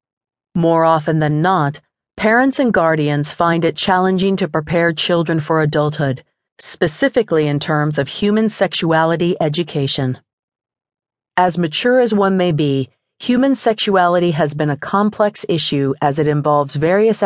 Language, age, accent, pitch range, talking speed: English, 40-59, American, 150-190 Hz, 135 wpm